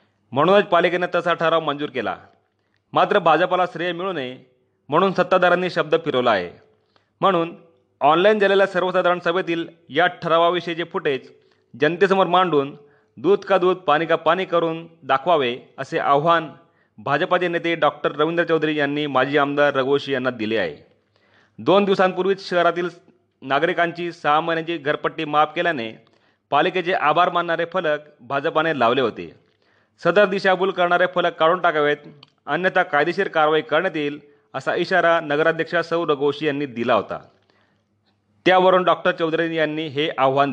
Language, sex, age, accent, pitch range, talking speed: Marathi, male, 30-49, native, 140-180 Hz, 130 wpm